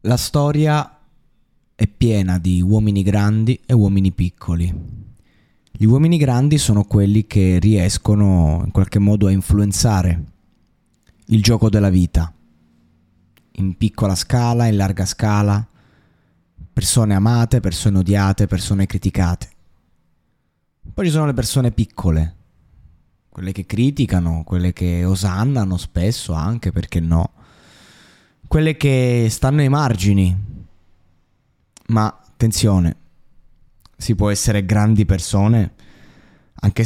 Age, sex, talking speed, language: 20-39, male, 110 wpm, Italian